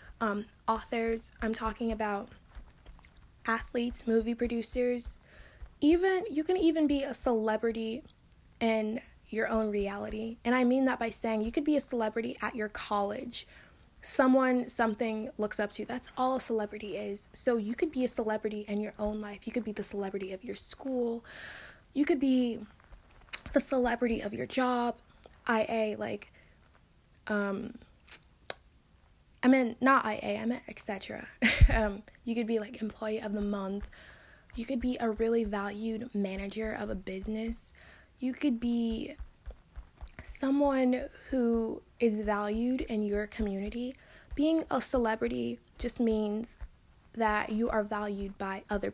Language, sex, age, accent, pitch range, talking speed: English, female, 20-39, American, 210-245 Hz, 150 wpm